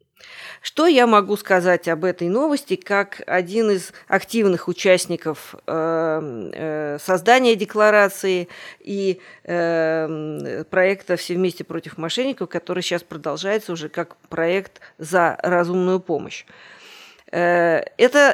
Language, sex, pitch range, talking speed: Russian, female, 170-220 Hz, 100 wpm